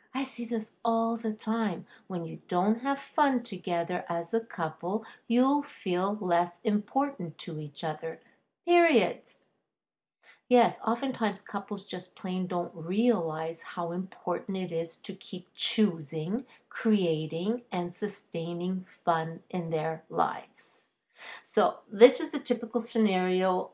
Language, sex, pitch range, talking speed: English, female, 175-225 Hz, 125 wpm